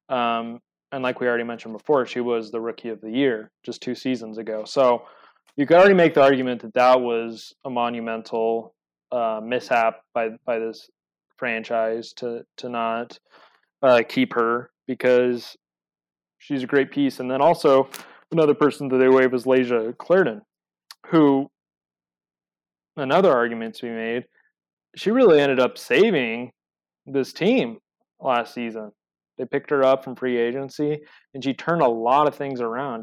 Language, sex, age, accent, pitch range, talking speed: English, male, 20-39, American, 115-140 Hz, 160 wpm